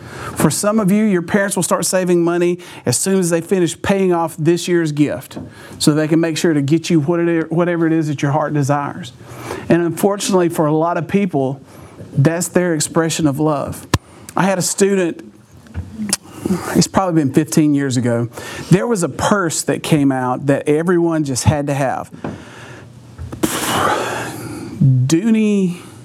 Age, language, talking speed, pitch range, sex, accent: 50-69, English, 165 wpm, 150-195 Hz, male, American